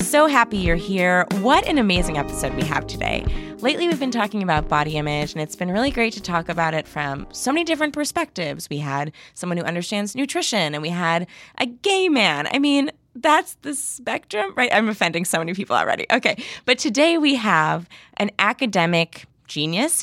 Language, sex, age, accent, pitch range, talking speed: English, female, 20-39, American, 165-230 Hz, 190 wpm